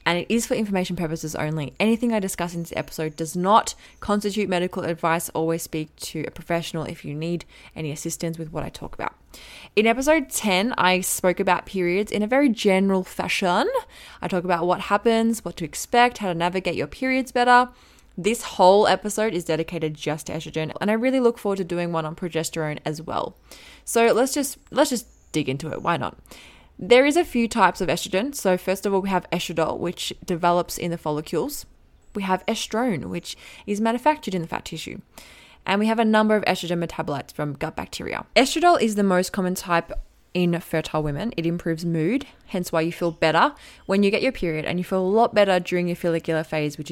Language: English